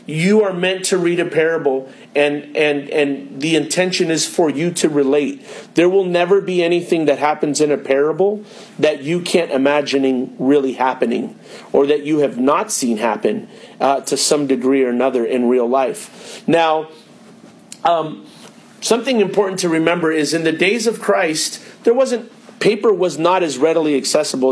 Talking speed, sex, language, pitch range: 170 wpm, male, English, 145-185 Hz